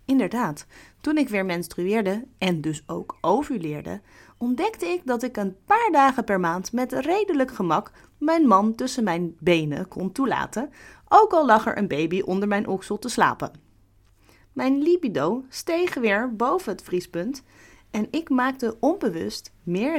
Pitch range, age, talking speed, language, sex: 170-255 Hz, 30-49, 155 wpm, Dutch, female